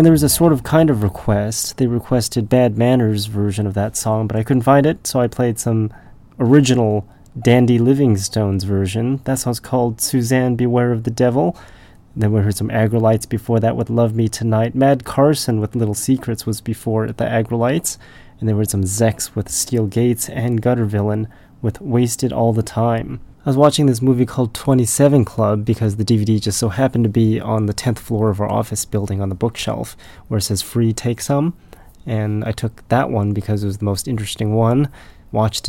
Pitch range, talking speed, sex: 105-125 Hz, 205 wpm, male